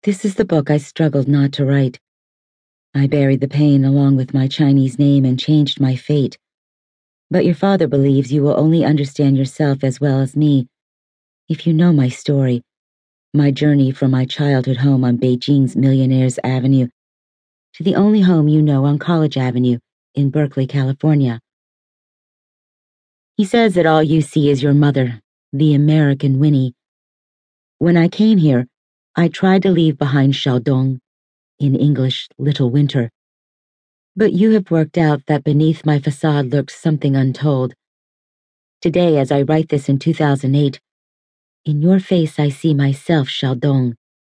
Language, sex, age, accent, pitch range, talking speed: English, female, 40-59, American, 130-150 Hz, 155 wpm